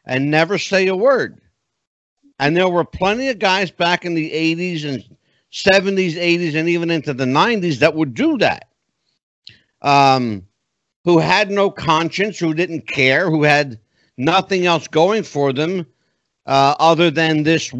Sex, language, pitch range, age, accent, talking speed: male, English, 145-180 Hz, 60-79, American, 155 wpm